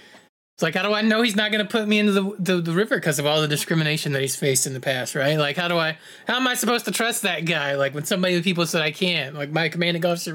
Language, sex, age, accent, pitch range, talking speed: English, male, 30-49, American, 145-185 Hz, 295 wpm